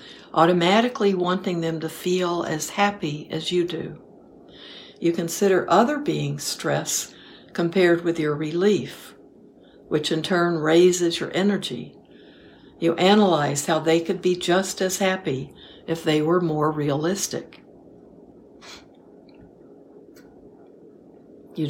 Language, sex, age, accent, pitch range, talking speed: English, female, 60-79, American, 160-190 Hz, 110 wpm